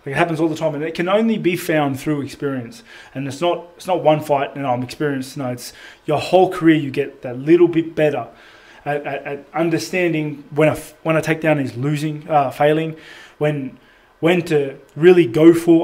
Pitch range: 145-170 Hz